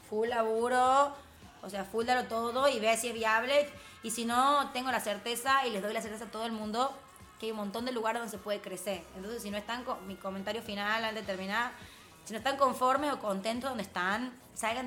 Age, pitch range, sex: 20-39, 195-235 Hz, female